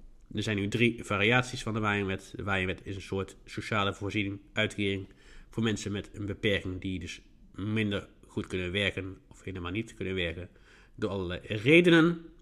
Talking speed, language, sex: 170 wpm, Dutch, male